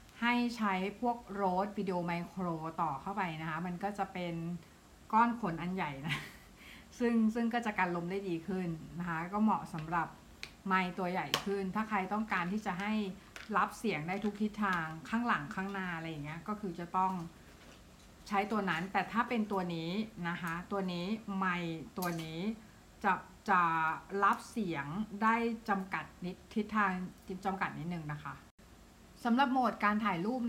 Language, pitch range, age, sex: Thai, 170-210 Hz, 60-79, female